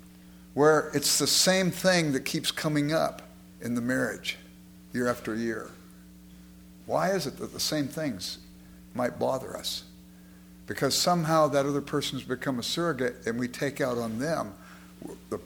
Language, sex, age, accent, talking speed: English, male, 60-79, American, 155 wpm